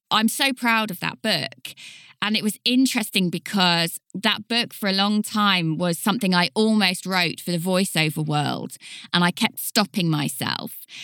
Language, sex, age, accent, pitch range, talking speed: English, female, 20-39, British, 170-225 Hz, 170 wpm